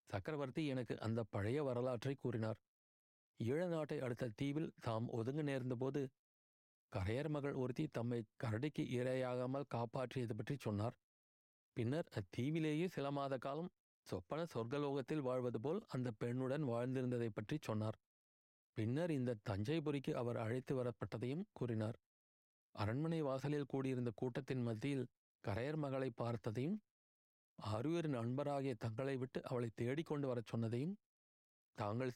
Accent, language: native, Tamil